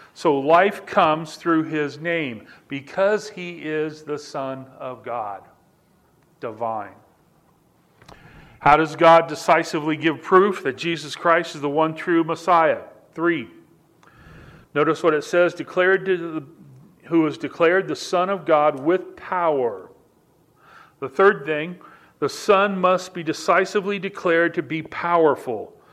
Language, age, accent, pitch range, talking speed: English, 40-59, American, 150-175 Hz, 130 wpm